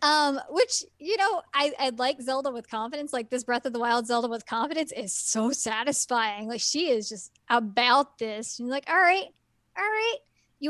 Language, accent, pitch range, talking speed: English, American, 220-290 Hz, 190 wpm